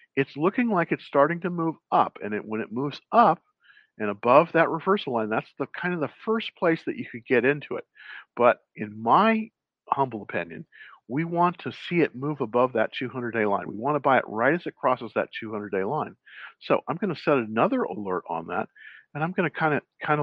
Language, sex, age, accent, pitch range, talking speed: English, male, 50-69, American, 105-155 Hz, 220 wpm